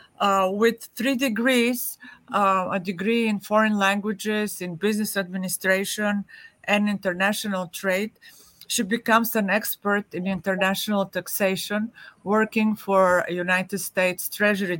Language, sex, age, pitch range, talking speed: English, female, 50-69, 185-220 Hz, 115 wpm